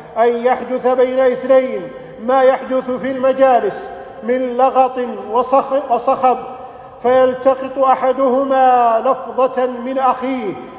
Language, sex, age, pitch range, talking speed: Arabic, male, 50-69, 240-260 Hz, 90 wpm